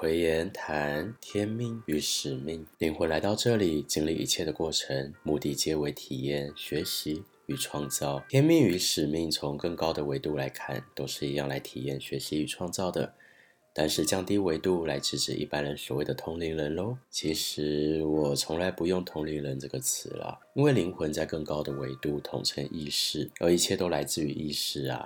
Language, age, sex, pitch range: Chinese, 20-39, male, 70-85 Hz